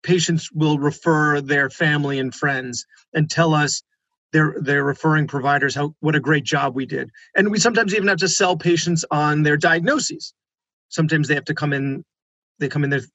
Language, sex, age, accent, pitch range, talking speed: English, male, 30-49, American, 150-185 Hz, 190 wpm